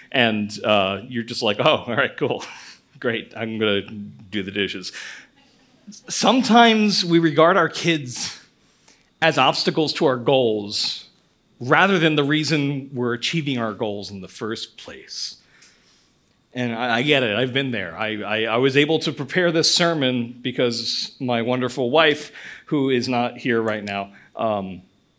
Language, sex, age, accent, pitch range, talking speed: English, male, 40-59, American, 110-145 Hz, 155 wpm